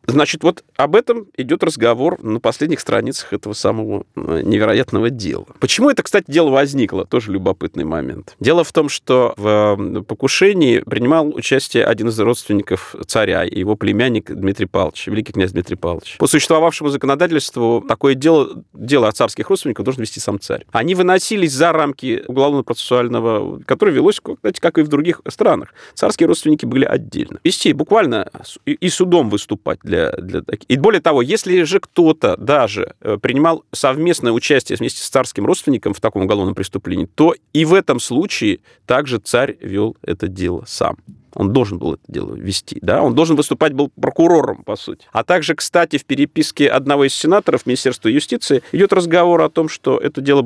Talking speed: 165 wpm